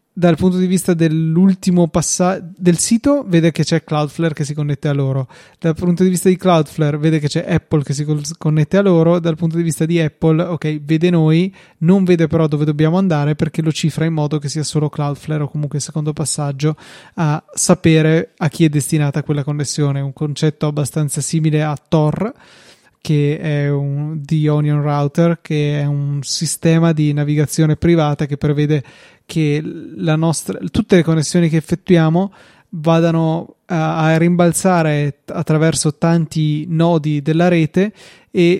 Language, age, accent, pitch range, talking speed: Italian, 20-39, native, 150-170 Hz, 165 wpm